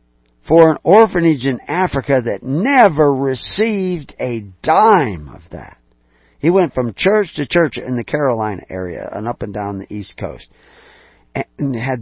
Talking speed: 155 wpm